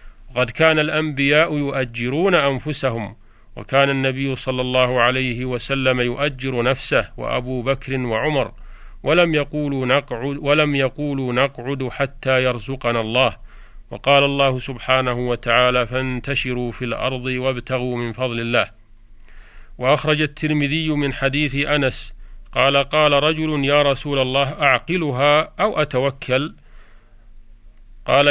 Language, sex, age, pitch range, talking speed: Arabic, male, 40-59, 125-140 Hz, 110 wpm